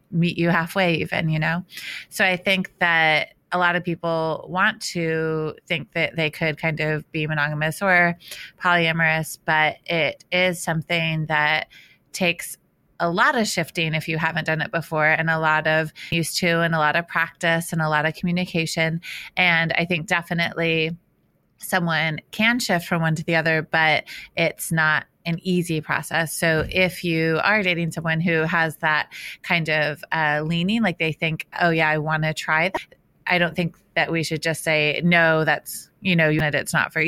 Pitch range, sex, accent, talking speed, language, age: 155-170 Hz, female, American, 190 wpm, English, 30-49